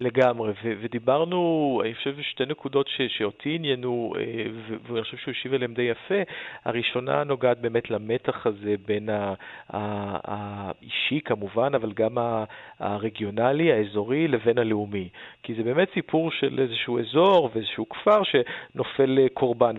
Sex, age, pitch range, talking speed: male, 40-59, 110-135 Hz, 150 wpm